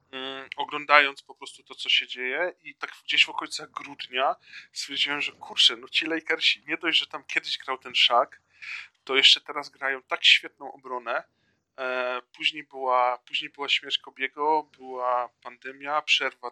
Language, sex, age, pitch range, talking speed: Polish, male, 20-39, 125-145 Hz, 155 wpm